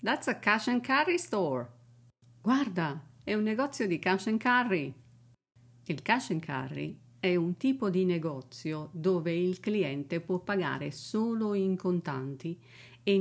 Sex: female